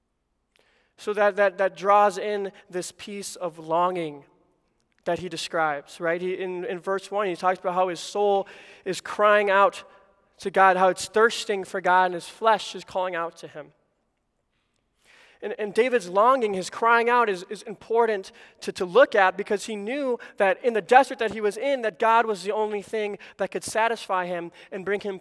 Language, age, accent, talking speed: English, 20-39, American, 195 wpm